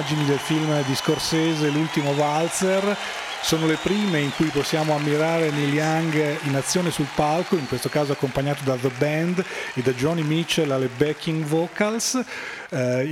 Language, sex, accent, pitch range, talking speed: Italian, male, native, 140-170 Hz, 155 wpm